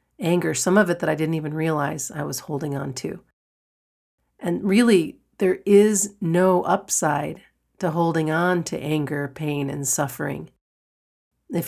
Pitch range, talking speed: 145-175 Hz, 150 wpm